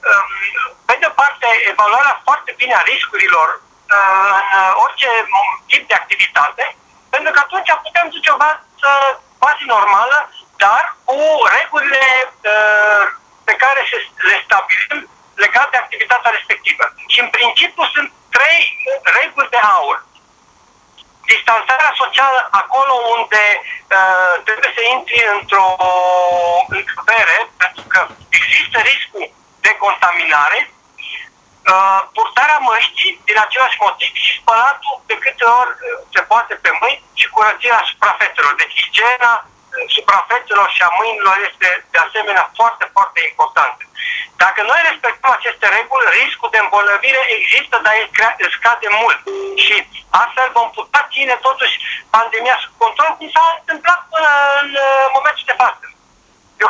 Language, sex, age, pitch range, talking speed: Romanian, male, 50-69, 220-340 Hz, 130 wpm